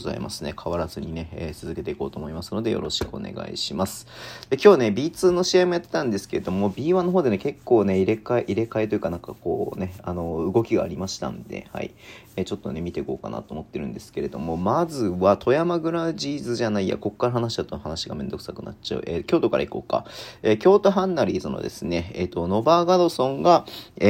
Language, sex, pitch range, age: Japanese, male, 90-145 Hz, 40-59